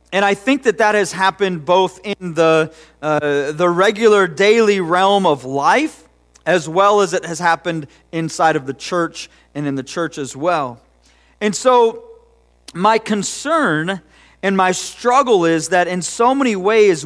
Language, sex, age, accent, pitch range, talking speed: English, male, 40-59, American, 140-205 Hz, 160 wpm